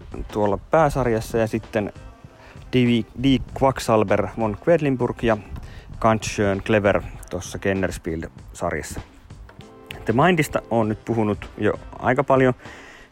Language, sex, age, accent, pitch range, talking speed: Finnish, male, 30-49, native, 100-130 Hz, 100 wpm